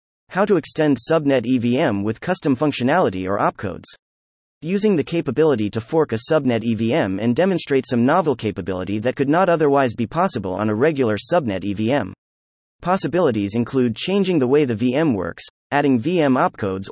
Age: 30-49